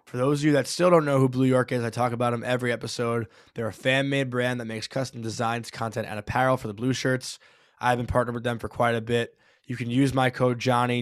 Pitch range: 110-125 Hz